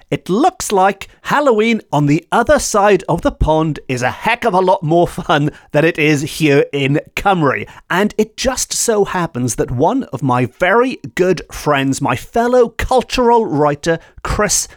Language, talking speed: English, 170 wpm